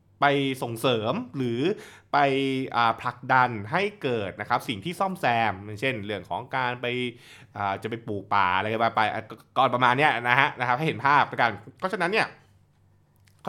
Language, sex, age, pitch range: Thai, male, 20-39, 105-140 Hz